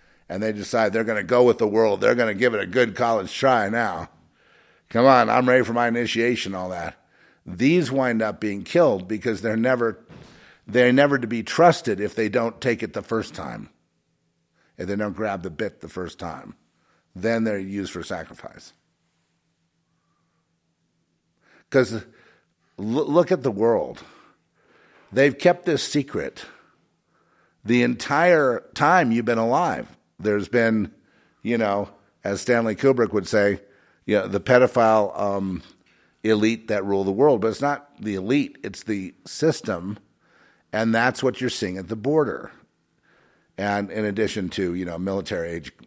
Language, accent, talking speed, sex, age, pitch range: English, American, 155 wpm, male, 50-69, 95-120 Hz